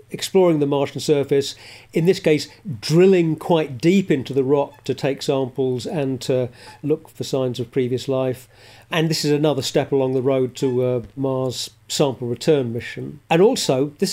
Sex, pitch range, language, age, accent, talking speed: male, 130-155 Hz, English, 40-59, British, 170 wpm